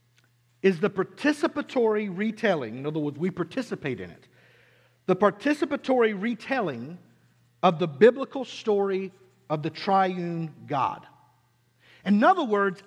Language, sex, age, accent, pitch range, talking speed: English, male, 50-69, American, 180-260 Hz, 115 wpm